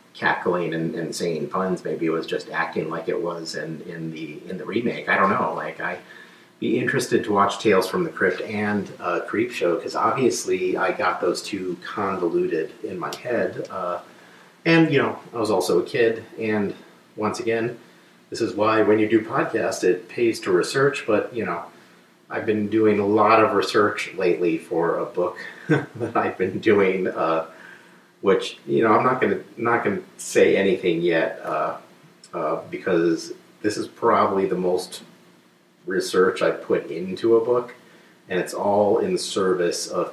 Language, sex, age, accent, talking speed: English, male, 40-59, American, 180 wpm